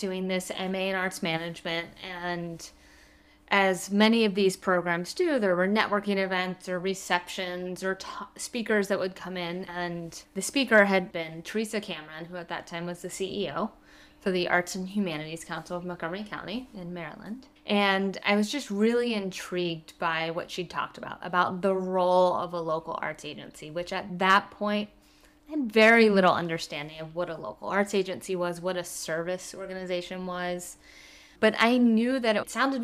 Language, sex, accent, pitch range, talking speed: English, female, American, 175-205 Hz, 175 wpm